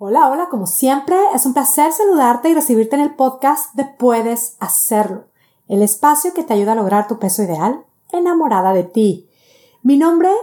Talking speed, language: 180 wpm, Spanish